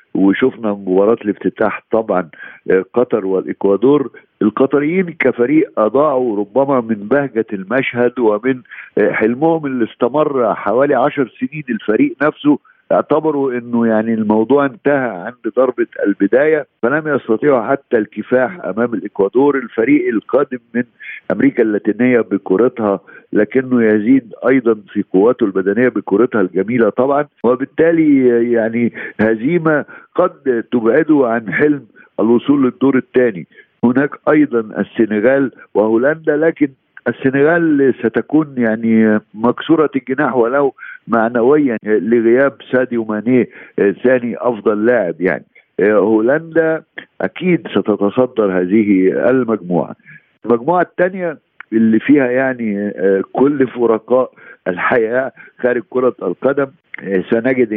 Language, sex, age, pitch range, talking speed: Arabic, male, 50-69, 110-140 Hz, 100 wpm